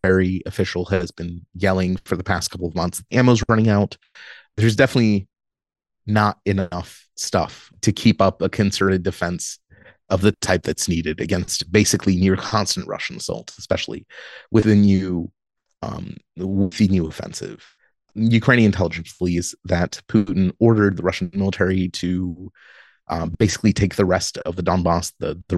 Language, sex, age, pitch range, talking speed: English, male, 30-49, 90-105 Hz, 145 wpm